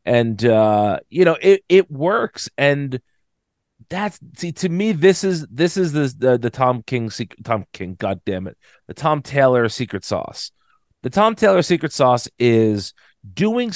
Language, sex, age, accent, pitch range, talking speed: English, male, 30-49, American, 110-155 Hz, 170 wpm